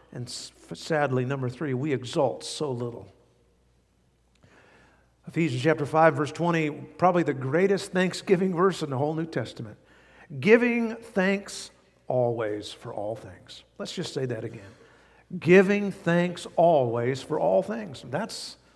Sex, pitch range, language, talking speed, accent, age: male, 125-170 Hz, English, 130 wpm, American, 50-69